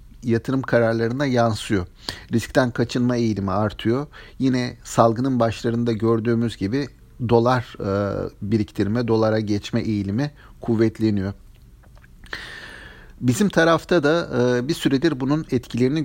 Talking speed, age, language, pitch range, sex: 95 wpm, 50-69, Turkish, 110-135 Hz, male